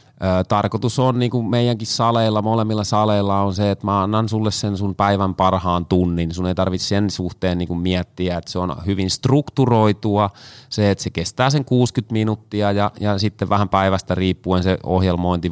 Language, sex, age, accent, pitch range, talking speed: Finnish, male, 30-49, native, 90-110 Hz, 165 wpm